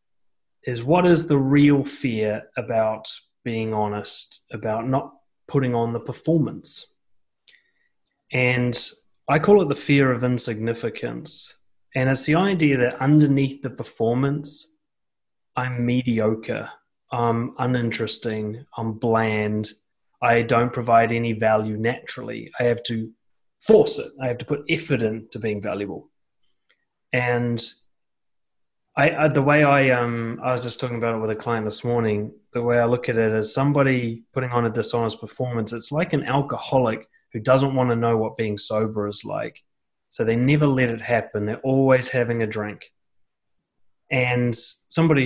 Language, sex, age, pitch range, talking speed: English, male, 30-49, 115-140 Hz, 150 wpm